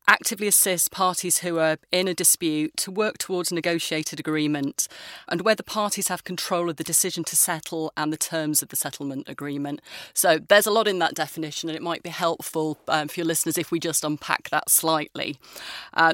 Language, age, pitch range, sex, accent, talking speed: English, 30-49, 155-185 Hz, female, British, 205 wpm